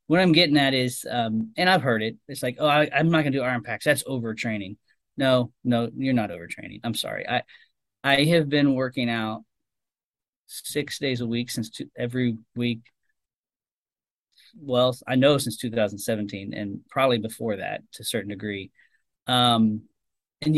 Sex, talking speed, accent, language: male, 170 wpm, American, English